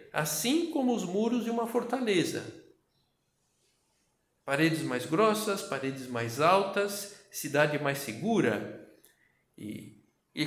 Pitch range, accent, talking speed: 130-175 Hz, Brazilian, 105 wpm